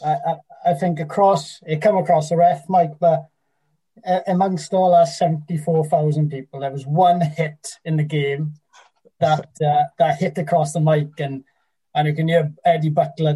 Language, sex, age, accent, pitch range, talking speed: English, male, 20-39, British, 145-170 Hz, 170 wpm